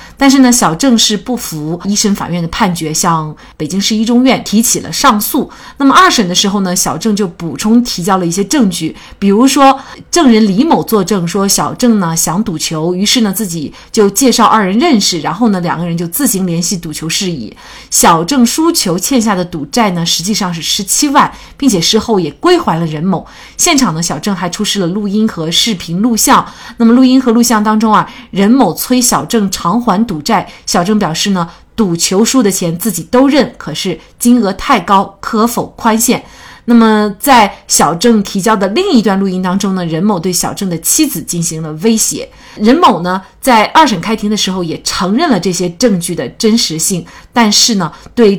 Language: Chinese